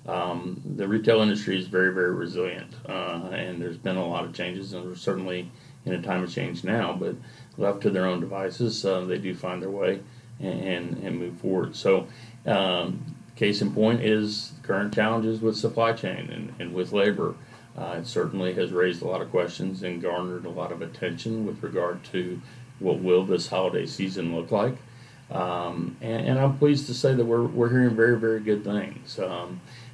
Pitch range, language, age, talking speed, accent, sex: 90-115 Hz, English, 40-59, 195 wpm, American, male